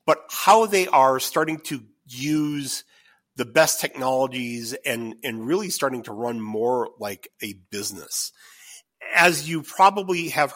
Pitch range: 115-145 Hz